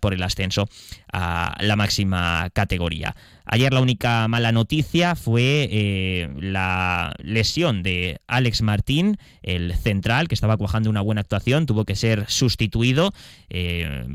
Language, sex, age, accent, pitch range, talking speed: Spanish, male, 20-39, Spanish, 95-115 Hz, 135 wpm